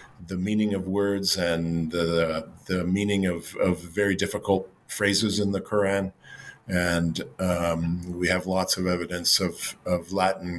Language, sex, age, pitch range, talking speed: English, male, 50-69, 90-100 Hz, 145 wpm